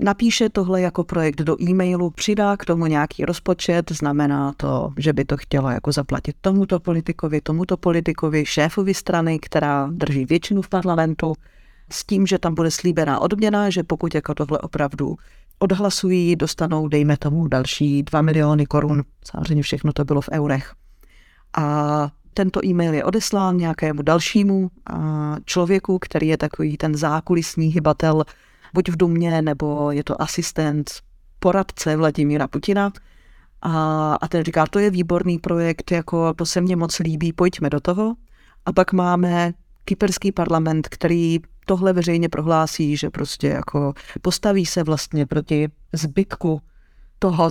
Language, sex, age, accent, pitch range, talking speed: Czech, female, 30-49, native, 150-180 Hz, 145 wpm